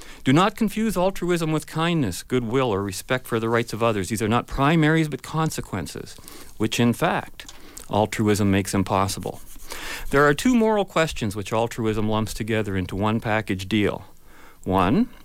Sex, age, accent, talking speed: male, 50-69, American, 155 wpm